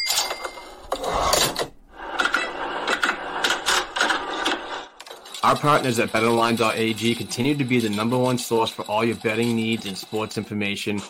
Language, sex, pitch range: English, male, 110-125 Hz